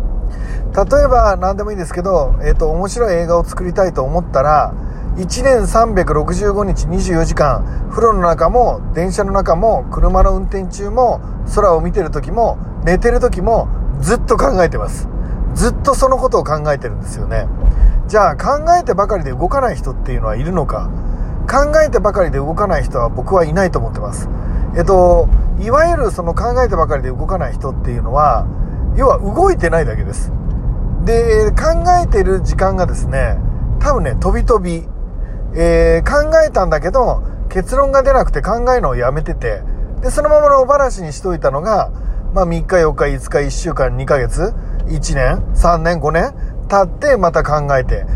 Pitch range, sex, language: 155-240 Hz, male, Japanese